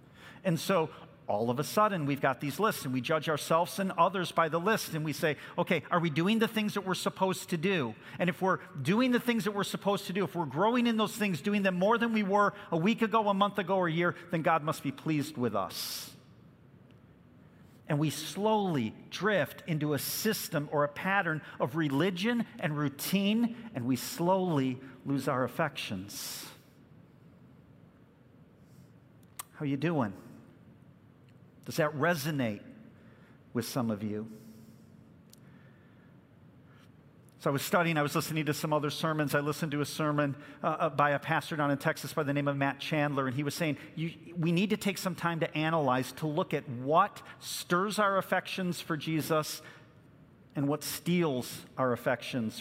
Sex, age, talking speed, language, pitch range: male, 50-69, 180 wpm, English, 135-180 Hz